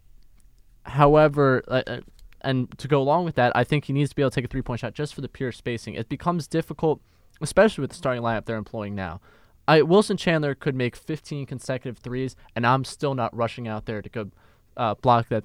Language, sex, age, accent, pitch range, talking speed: English, male, 20-39, American, 110-140 Hz, 215 wpm